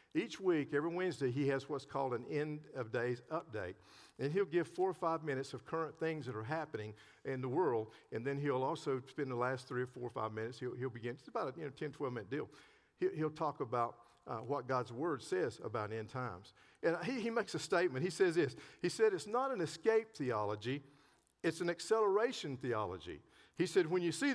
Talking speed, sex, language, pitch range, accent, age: 220 wpm, male, English, 145-235 Hz, American, 50-69